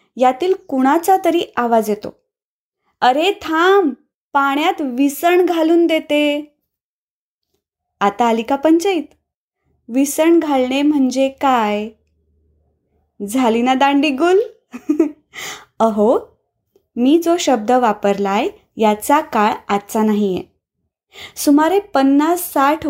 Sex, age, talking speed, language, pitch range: female, 20-39, 90 wpm, Marathi, 235-315 Hz